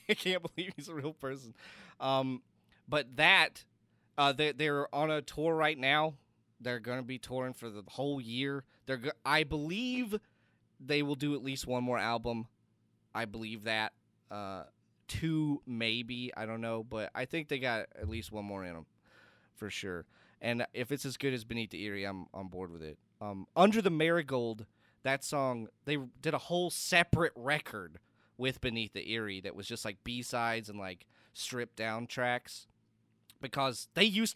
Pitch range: 110-145 Hz